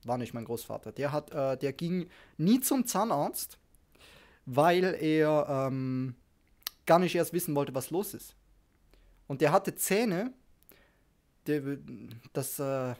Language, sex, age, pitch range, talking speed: German, male, 20-39, 130-175 Hz, 140 wpm